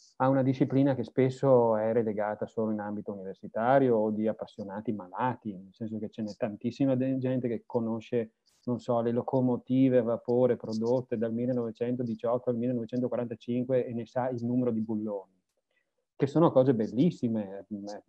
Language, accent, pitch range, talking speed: English, Italian, 115-130 Hz, 155 wpm